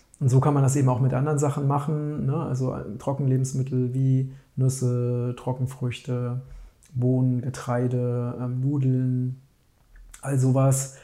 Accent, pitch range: German, 130-145 Hz